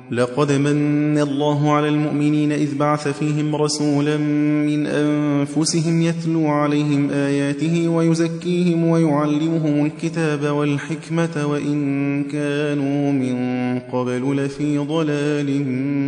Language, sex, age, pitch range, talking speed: Persian, male, 20-39, 140-160 Hz, 90 wpm